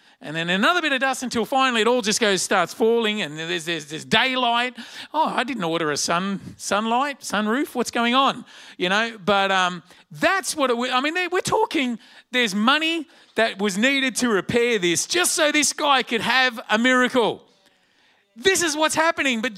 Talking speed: 190 wpm